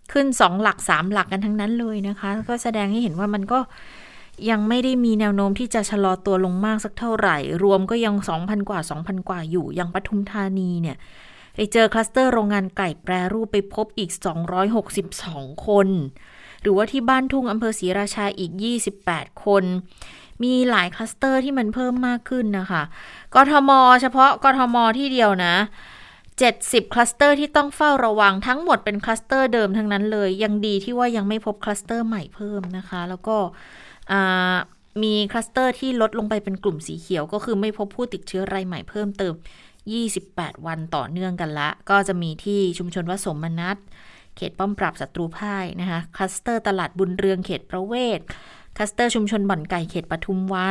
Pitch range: 185-225 Hz